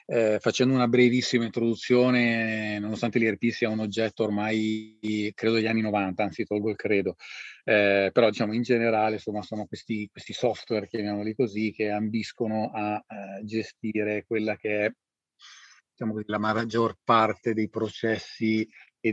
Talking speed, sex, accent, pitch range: 145 wpm, male, native, 105-120 Hz